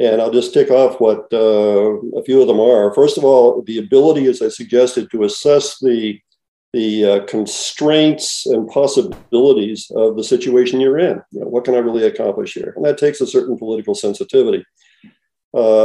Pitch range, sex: 120-195 Hz, male